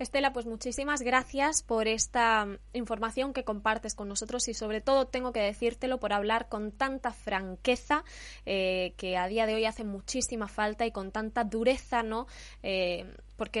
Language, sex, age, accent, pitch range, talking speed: Spanish, female, 20-39, Spanish, 220-275 Hz, 165 wpm